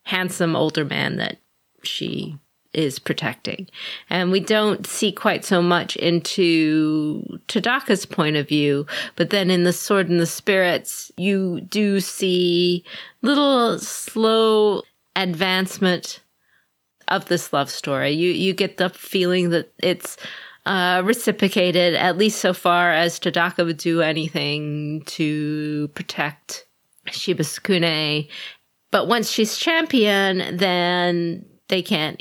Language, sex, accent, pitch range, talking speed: English, female, American, 155-195 Hz, 120 wpm